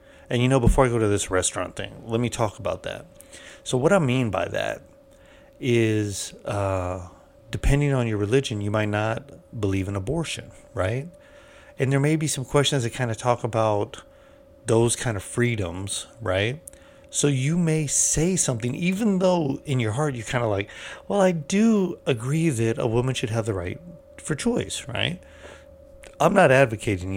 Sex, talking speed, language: male, 180 wpm, English